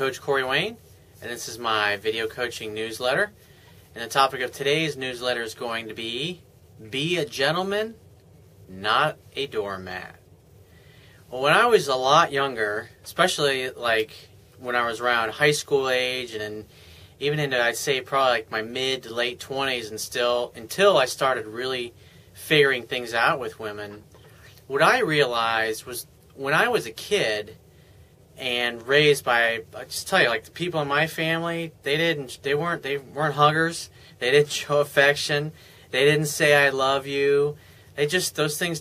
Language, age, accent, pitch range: English, 30-49, American, 115-150 Hz